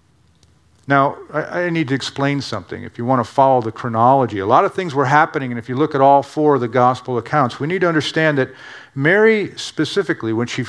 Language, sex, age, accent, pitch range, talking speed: English, male, 50-69, American, 125-155 Hz, 220 wpm